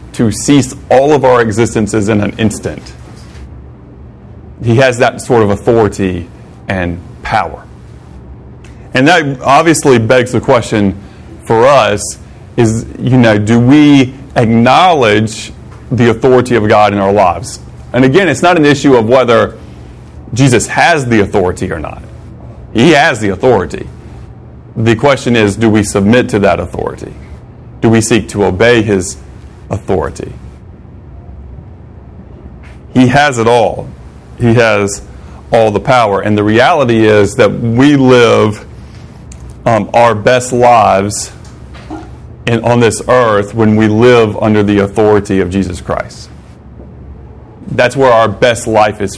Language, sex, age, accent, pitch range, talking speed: English, male, 30-49, American, 100-120 Hz, 135 wpm